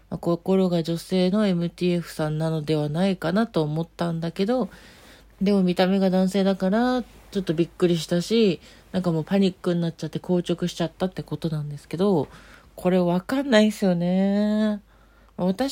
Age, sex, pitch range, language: 40-59, female, 165-200 Hz, Japanese